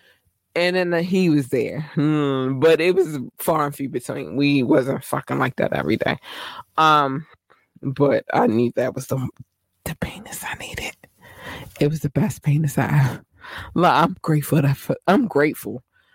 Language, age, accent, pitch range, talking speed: English, 20-39, American, 135-165 Hz, 155 wpm